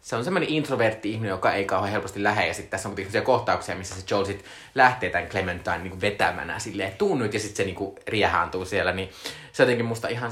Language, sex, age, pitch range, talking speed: Finnish, male, 20-39, 95-120 Hz, 220 wpm